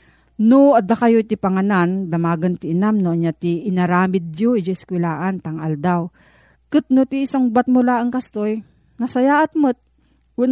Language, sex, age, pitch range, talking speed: Filipino, female, 40-59, 170-240 Hz, 170 wpm